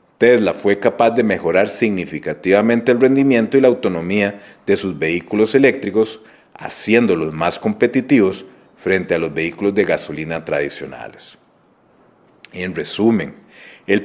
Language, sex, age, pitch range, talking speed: Spanish, male, 40-59, 90-120 Hz, 120 wpm